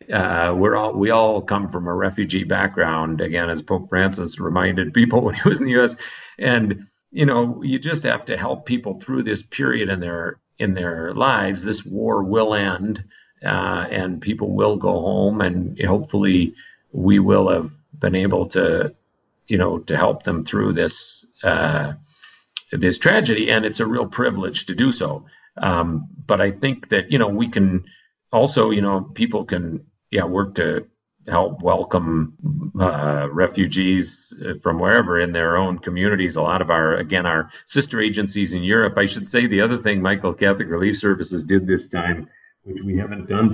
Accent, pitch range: American, 90-110 Hz